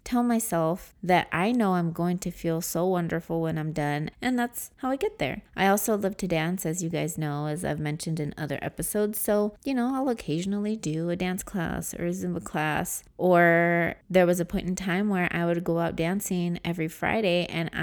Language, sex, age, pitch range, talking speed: English, female, 30-49, 160-195 Hz, 215 wpm